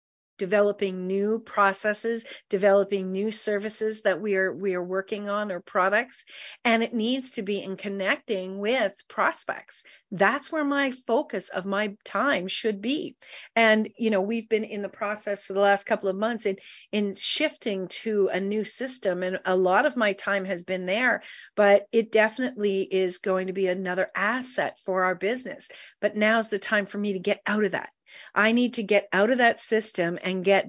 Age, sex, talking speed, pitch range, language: 40-59, female, 190 wpm, 185-220 Hz, English